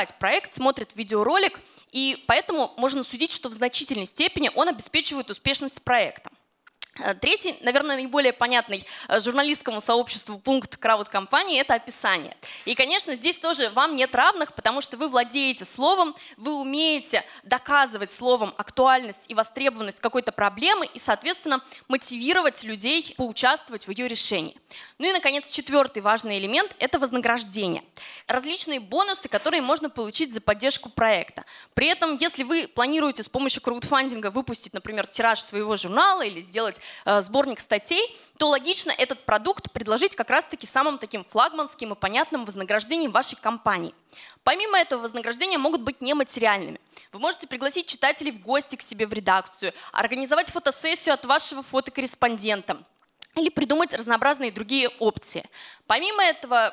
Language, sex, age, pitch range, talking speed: Russian, female, 20-39, 225-300 Hz, 140 wpm